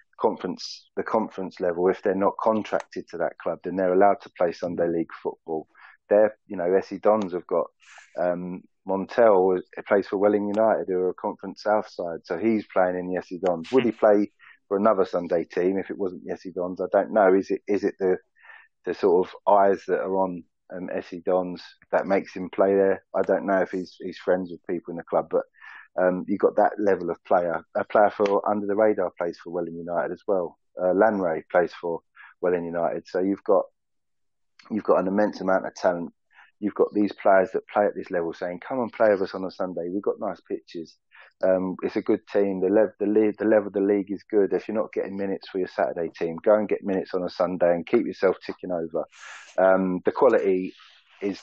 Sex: male